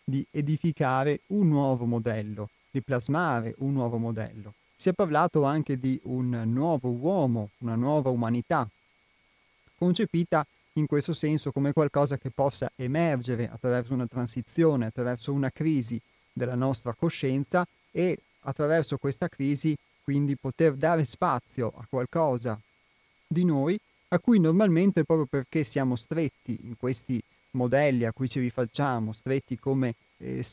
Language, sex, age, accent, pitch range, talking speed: Italian, male, 30-49, native, 120-150 Hz, 135 wpm